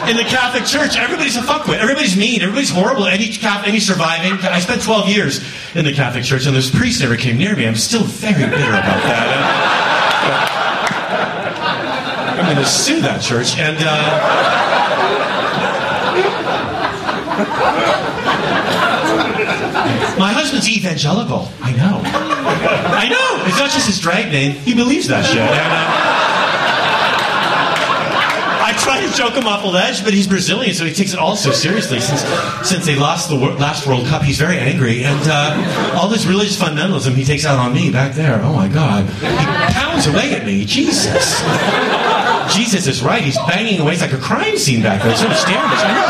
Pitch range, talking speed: 145-215 Hz, 165 wpm